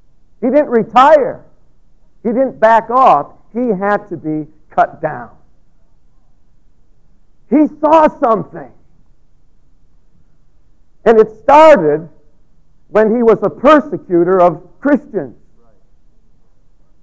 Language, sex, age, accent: English, male, 50-69, American